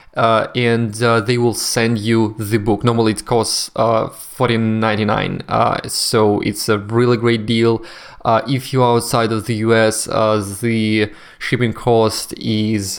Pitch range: 105-120 Hz